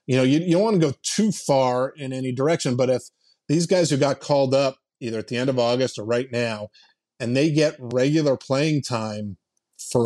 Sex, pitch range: male, 120-145 Hz